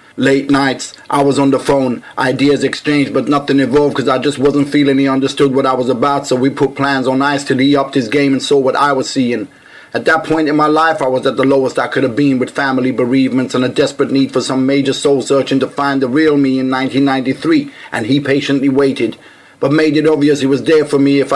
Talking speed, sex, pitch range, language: 245 wpm, male, 135-145 Hz, English